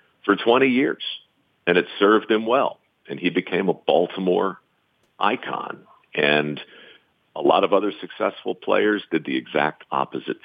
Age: 50-69